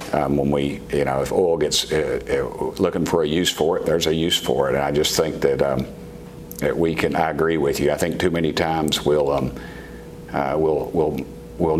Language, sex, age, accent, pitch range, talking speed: English, male, 50-69, American, 70-80 Hz, 225 wpm